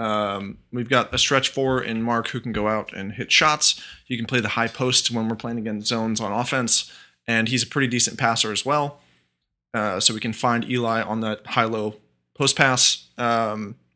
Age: 20-39